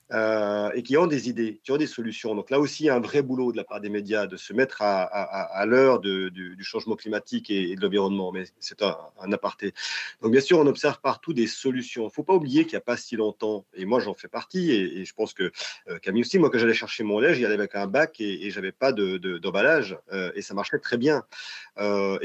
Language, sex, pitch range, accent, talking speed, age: French, male, 100-130 Hz, French, 280 wpm, 40-59